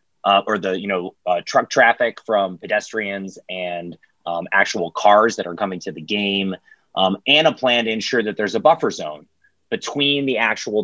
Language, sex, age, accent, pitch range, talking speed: English, male, 30-49, American, 95-115 Hz, 190 wpm